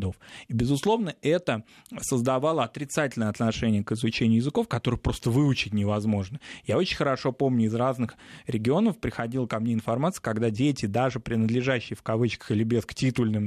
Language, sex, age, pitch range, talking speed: Russian, male, 20-39, 110-135 Hz, 150 wpm